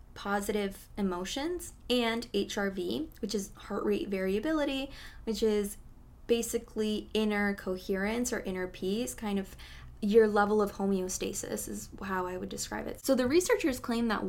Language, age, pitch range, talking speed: English, 20-39, 185-220 Hz, 145 wpm